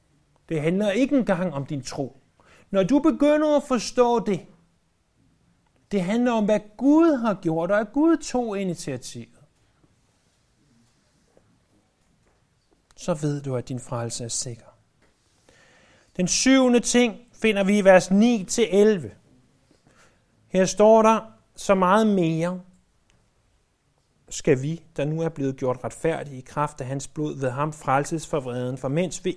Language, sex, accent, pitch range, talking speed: Danish, male, native, 140-195 Hz, 140 wpm